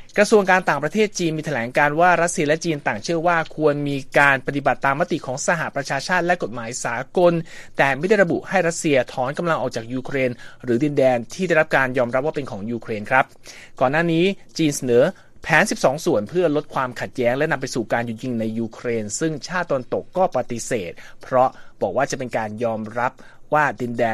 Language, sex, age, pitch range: Thai, male, 30-49, 125-175 Hz